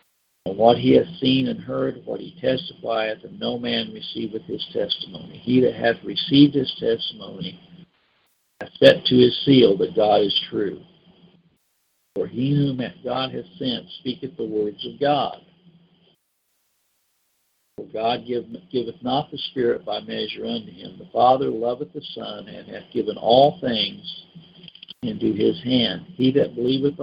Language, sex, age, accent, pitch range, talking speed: English, male, 50-69, American, 120-180 Hz, 150 wpm